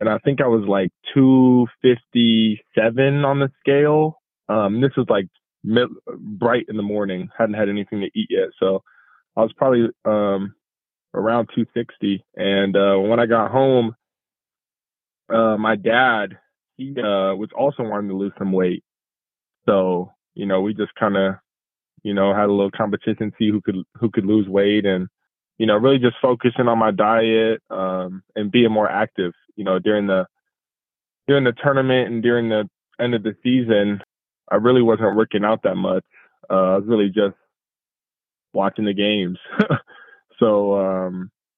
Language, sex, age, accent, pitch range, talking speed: English, male, 20-39, American, 100-120 Hz, 165 wpm